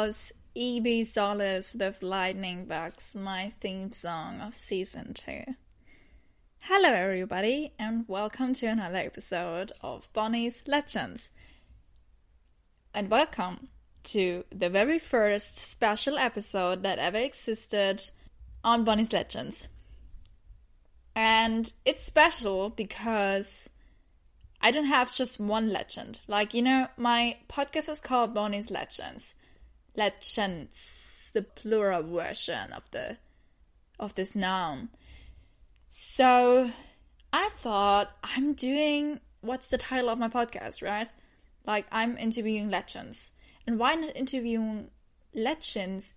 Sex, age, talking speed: female, 10-29, 110 wpm